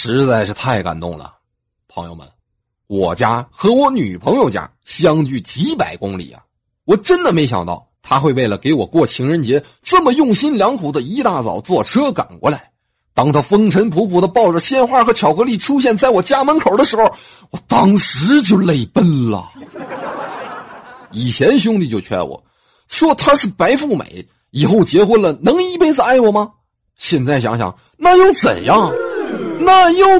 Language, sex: Chinese, male